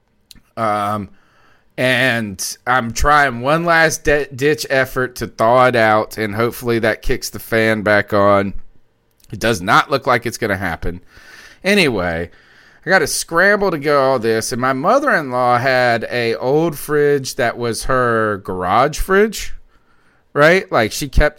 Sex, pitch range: male, 115-160 Hz